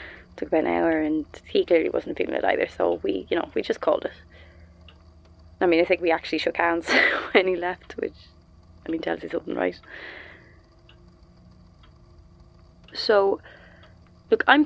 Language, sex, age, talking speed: English, female, 20-39, 165 wpm